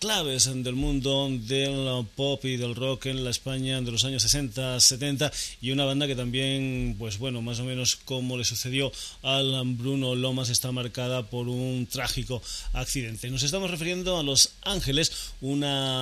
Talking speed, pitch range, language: 170 wpm, 120-140 Hz, Spanish